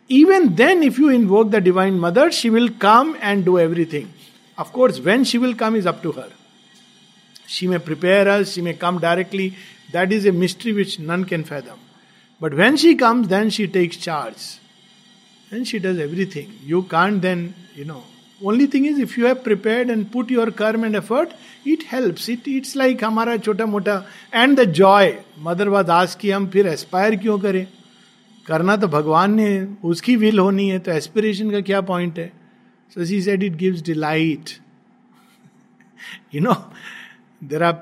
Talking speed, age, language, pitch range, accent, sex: 155 wpm, 50-69, English, 180-230 Hz, Indian, male